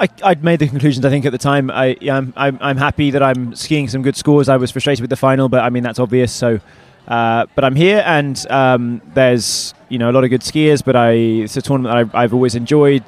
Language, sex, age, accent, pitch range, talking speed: English, male, 20-39, British, 125-145 Hz, 255 wpm